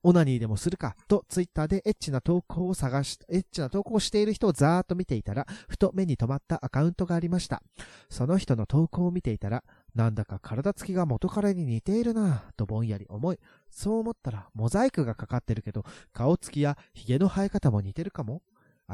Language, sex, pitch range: Japanese, male, 120-185 Hz